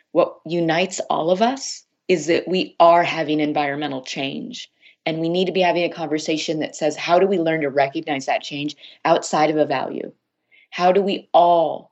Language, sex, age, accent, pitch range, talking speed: English, female, 30-49, American, 150-175 Hz, 190 wpm